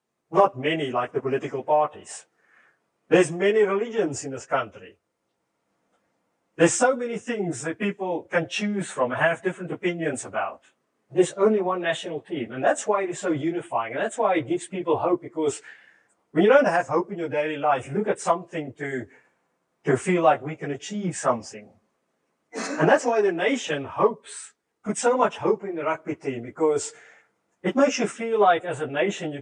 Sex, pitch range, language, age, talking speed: male, 150-200 Hz, English, 30-49, 180 wpm